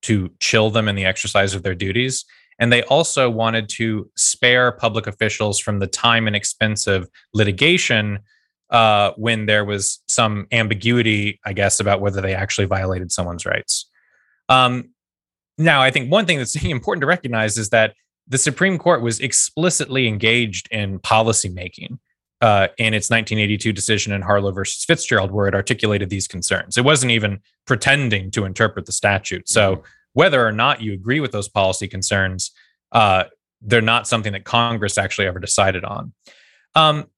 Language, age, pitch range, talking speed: English, 20-39, 100-125 Hz, 165 wpm